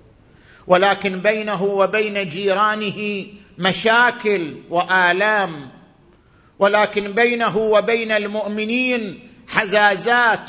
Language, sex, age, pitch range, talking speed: Arabic, male, 50-69, 190-270 Hz, 65 wpm